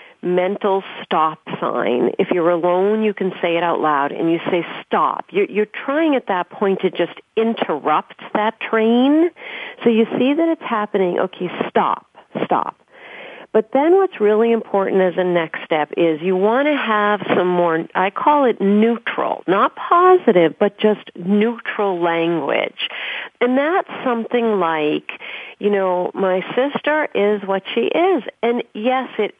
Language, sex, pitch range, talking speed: English, female, 175-230 Hz, 155 wpm